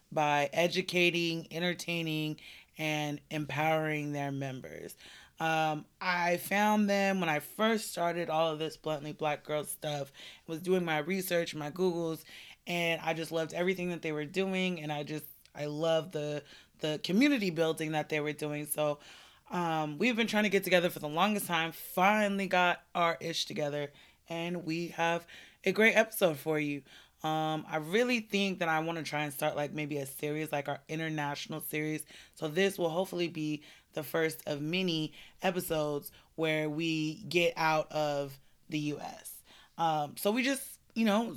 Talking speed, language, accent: 170 wpm, English, American